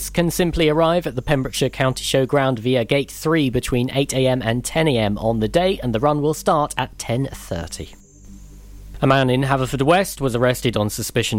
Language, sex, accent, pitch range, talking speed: English, male, British, 100-140 Hz, 180 wpm